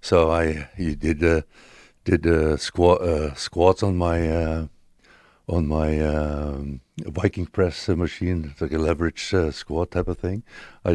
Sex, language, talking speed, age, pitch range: male, English, 160 wpm, 60-79, 85-105 Hz